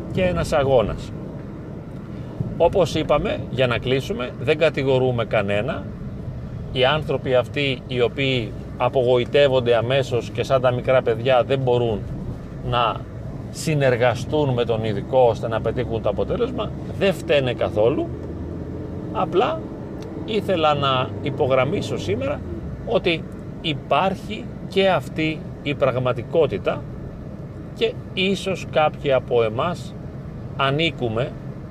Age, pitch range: 40-59, 120-140 Hz